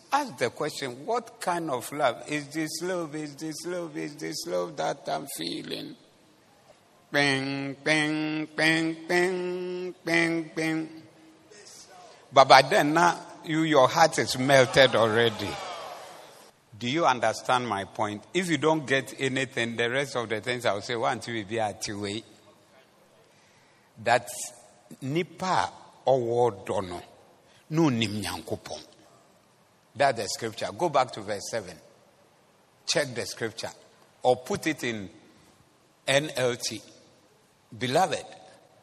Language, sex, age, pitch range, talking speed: English, male, 60-79, 120-180 Hz, 130 wpm